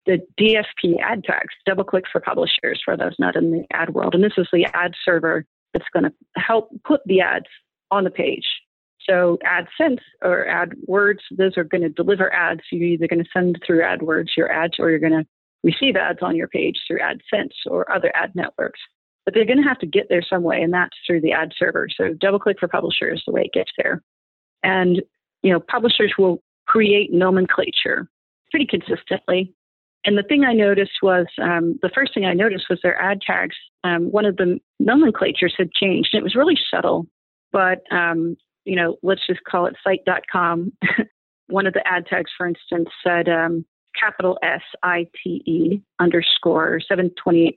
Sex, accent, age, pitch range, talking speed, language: female, American, 40-59, 170-200 Hz, 190 wpm, English